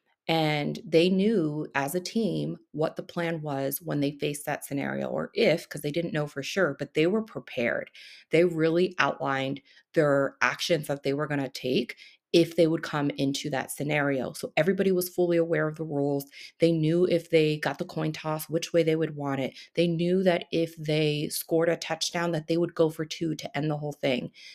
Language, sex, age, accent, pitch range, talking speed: English, female, 30-49, American, 150-170 Hz, 210 wpm